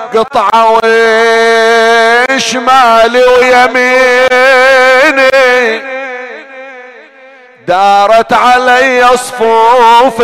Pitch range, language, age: 225-255 Hz, Arabic, 40-59